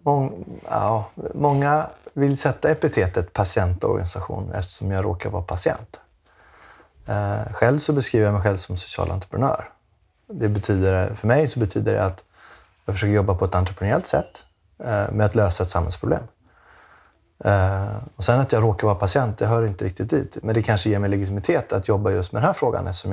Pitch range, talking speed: 95-115 Hz, 170 wpm